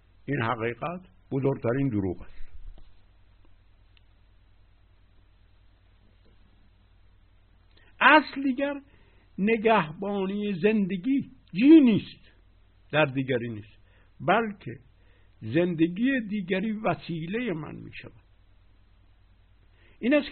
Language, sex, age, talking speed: Persian, male, 60-79, 60 wpm